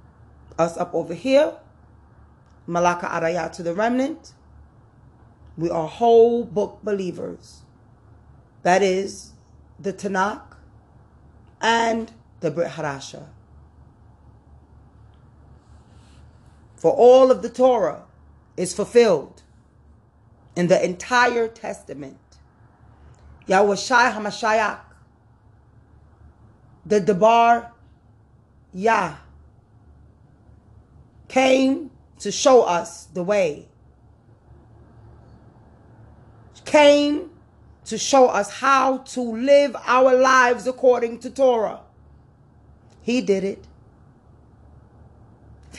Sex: female